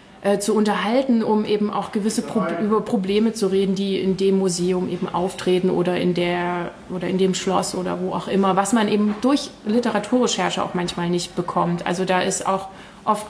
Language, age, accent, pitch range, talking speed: German, 20-39, German, 185-215 Hz, 190 wpm